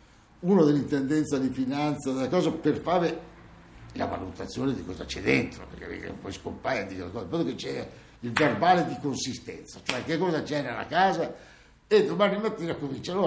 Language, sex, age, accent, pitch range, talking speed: Italian, male, 60-79, native, 120-180 Hz, 150 wpm